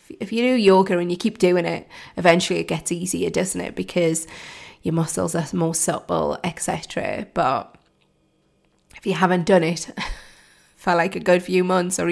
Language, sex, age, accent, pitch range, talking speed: English, female, 20-39, British, 165-195 Hz, 175 wpm